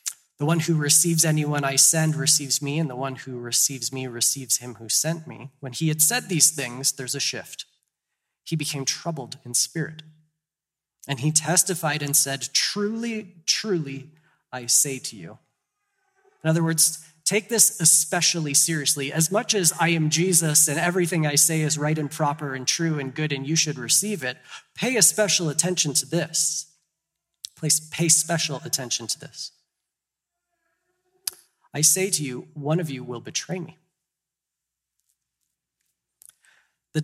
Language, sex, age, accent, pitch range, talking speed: English, male, 20-39, American, 130-165 Hz, 160 wpm